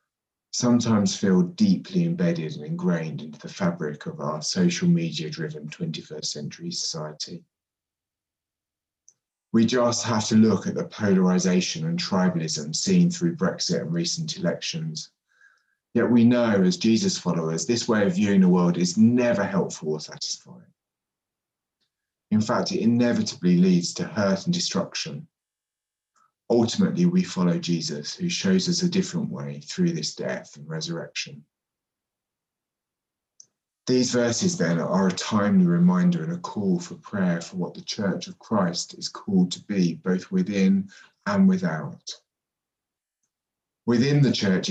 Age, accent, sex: 30-49, British, male